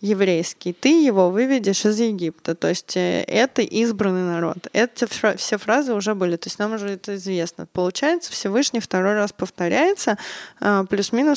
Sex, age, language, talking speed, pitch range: female, 20-39, Russian, 150 wpm, 185-240 Hz